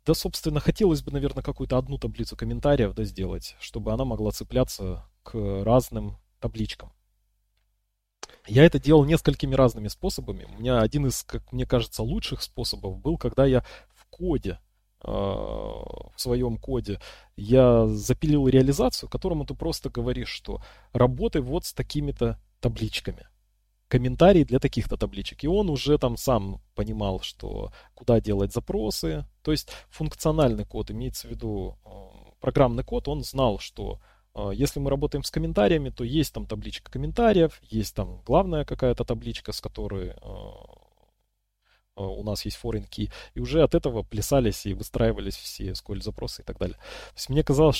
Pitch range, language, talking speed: 105-140 Hz, Russian, 150 wpm